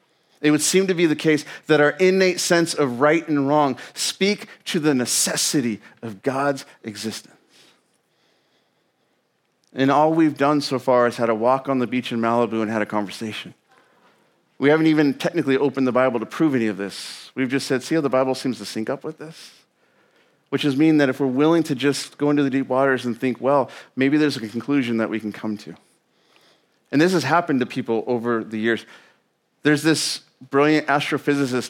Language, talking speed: English, 200 wpm